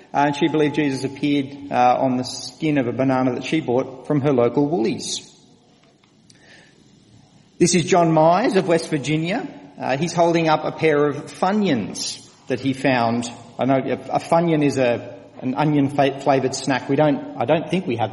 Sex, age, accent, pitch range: male, 40-59, Australian, 125-155 Hz